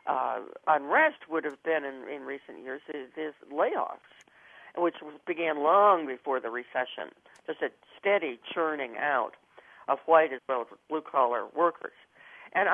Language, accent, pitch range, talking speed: English, American, 140-185 Hz, 150 wpm